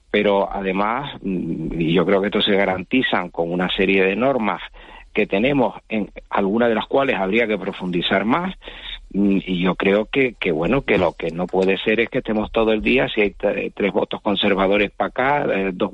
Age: 50-69